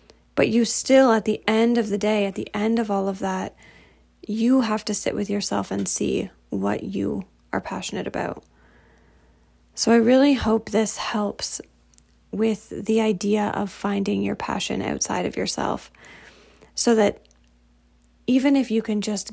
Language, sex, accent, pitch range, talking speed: English, female, American, 195-225 Hz, 160 wpm